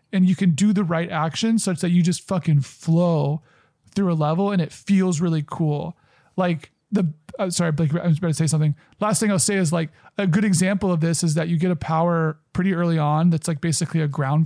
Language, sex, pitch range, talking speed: English, male, 160-190 Hz, 235 wpm